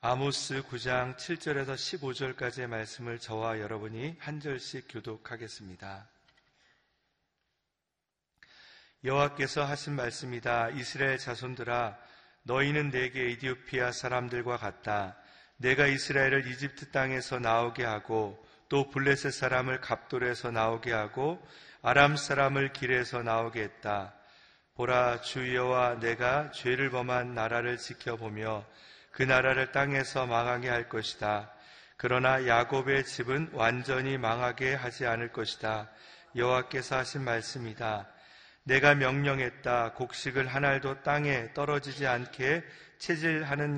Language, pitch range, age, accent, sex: Korean, 115-135 Hz, 40-59, native, male